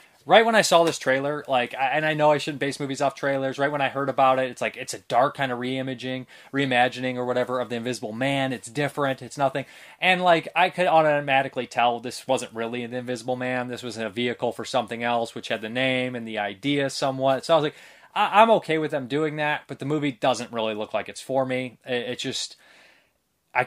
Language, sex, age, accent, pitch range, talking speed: English, male, 20-39, American, 115-140 Hz, 235 wpm